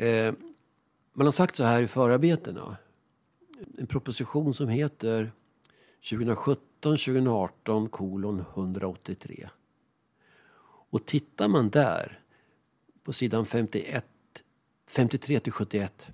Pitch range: 105-145 Hz